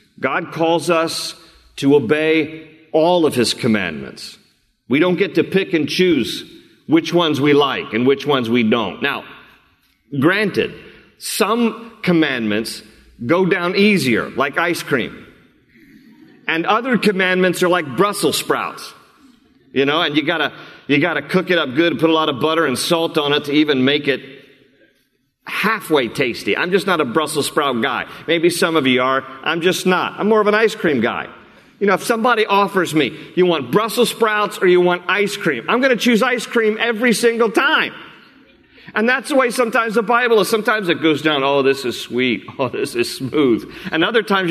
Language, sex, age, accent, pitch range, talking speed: English, male, 40-59, American, 155-220 Hz, 185 wpm